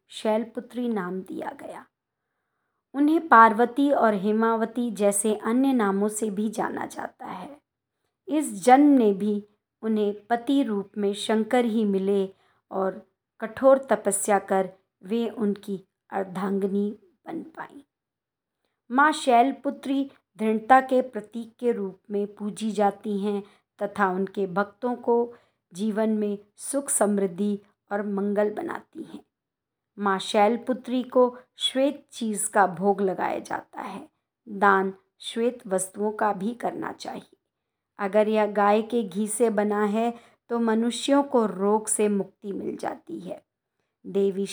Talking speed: 125 wpm